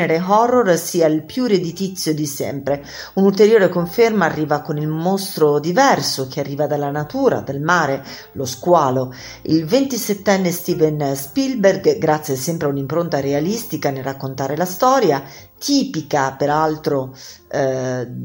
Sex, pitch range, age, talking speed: female, 145-195 Hz, 40-59, 125 wpm